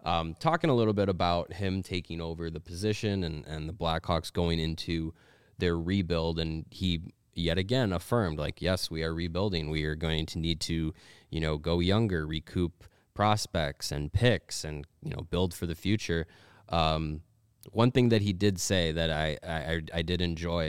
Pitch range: 80-95 Hz